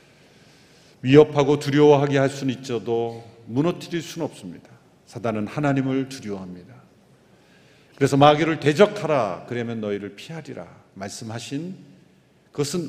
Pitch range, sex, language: 125-175 Hz, male, Korean